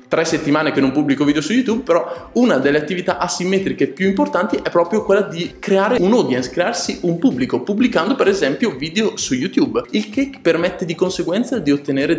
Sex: male